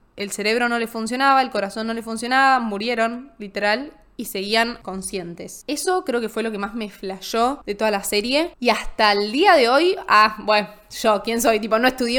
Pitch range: 205-255 Hz